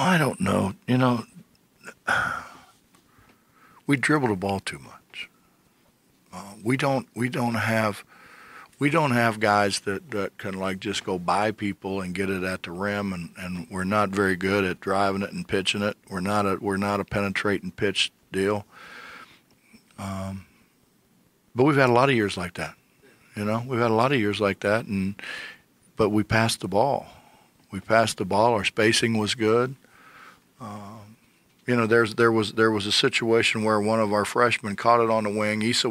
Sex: male